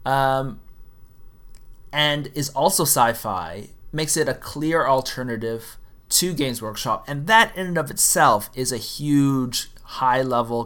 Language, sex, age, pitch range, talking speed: English, male, 30-49, 110-140 Hz, 130 wpm